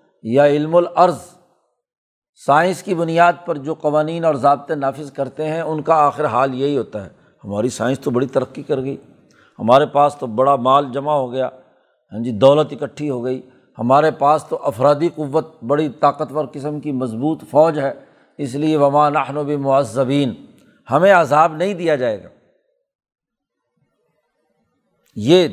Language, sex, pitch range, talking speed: Urdu, male, 140-165 Hz, 155 wpm